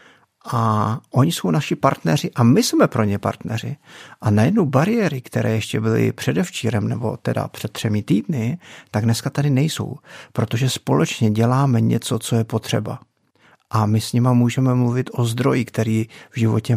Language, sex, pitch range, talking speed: Czech, male, 110-130 Hz, 160 wpm